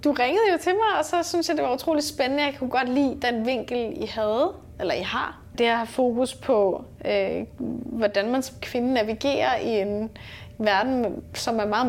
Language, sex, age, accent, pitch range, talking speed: Danish, female, 10-29, native, 210-270 Hz, 200 wpm